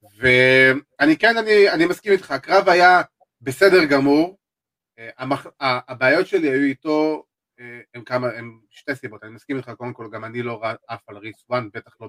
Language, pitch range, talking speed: Hebrew, 115-155 Hz, 180 wpm